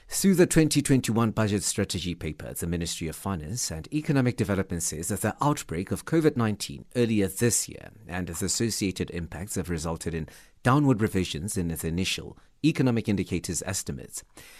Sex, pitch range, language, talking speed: male, 95-130 Hz, English, 150 wpm